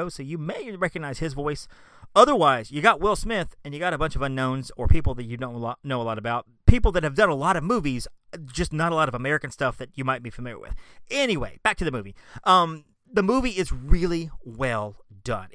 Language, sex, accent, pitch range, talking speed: English, male, American, 120-160 Hz, 230 wpm